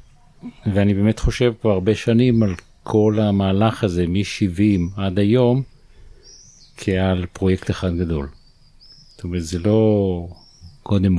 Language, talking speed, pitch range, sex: Hebrew, 120 wpm, 95-110 Hz, male